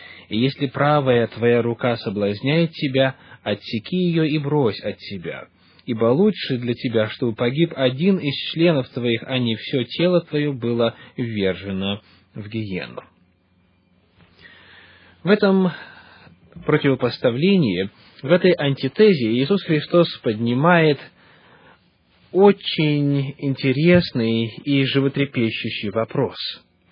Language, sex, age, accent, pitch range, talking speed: Russian, male, 20-39, native, 115-155 Hz, 105 wpm